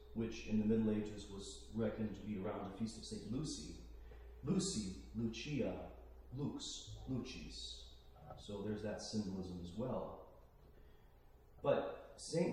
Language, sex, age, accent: English, male, 40-59, American